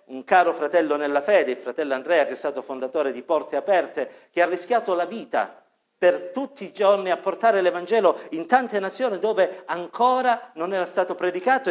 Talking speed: 185 wpm